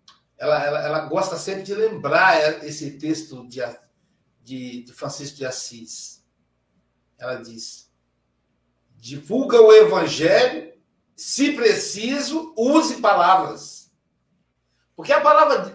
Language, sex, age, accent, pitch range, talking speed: Portuguese, male, 60-79, Brazilian, 175-230 Hz, 105 wpm